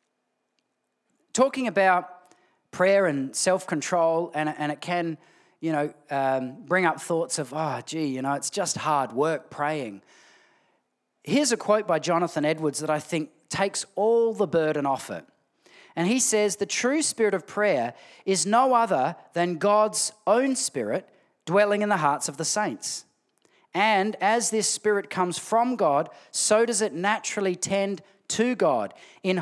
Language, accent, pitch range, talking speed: English, Australian, 165-220 Hz, 155 wpm